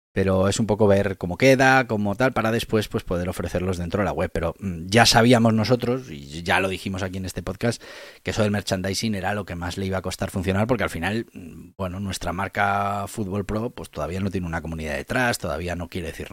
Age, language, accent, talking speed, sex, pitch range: 30-49, Spanish, Spanish, 230 wpm, male, 90-115 Hz